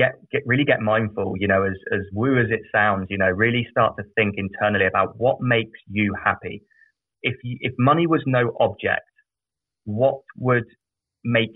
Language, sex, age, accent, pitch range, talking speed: English, male, 20-39, British, 100-115 Hz, 165 wpm